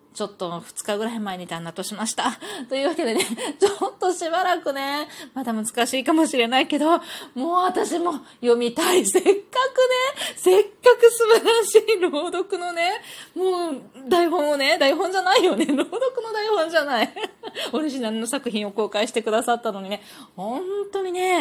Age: 20-39